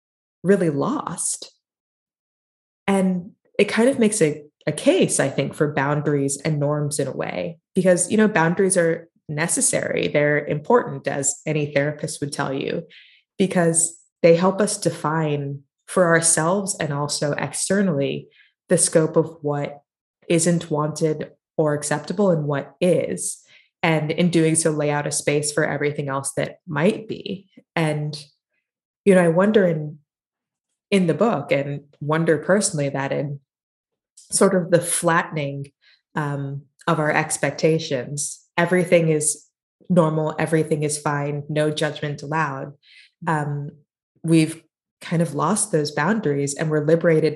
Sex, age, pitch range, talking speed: female, 20-39, 145-175 Hz, 140 wpm